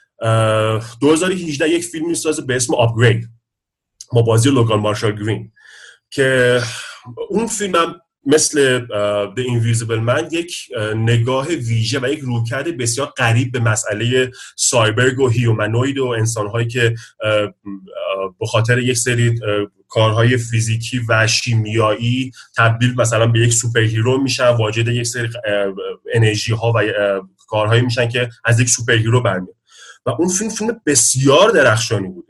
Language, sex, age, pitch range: Persian, male, 30-49, 110-130 Hz